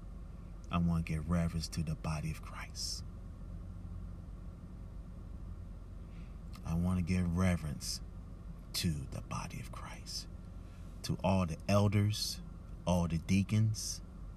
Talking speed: 115 wpm